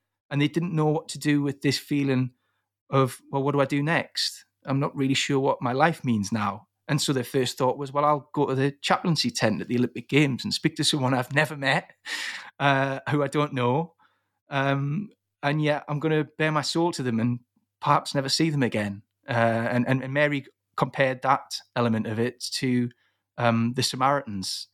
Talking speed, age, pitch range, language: 210 wpm, 30-49, 115-145 Hz, English